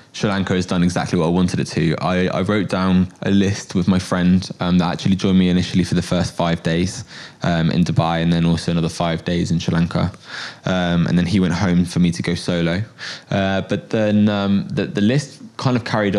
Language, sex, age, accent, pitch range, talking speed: English, male, 20-39, British, 90-105 Hz, 235 wpm